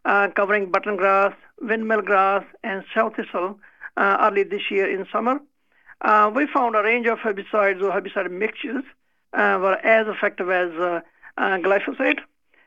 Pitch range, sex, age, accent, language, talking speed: 200-230 Hz, male, 50-69, Indian, English, 155 wpm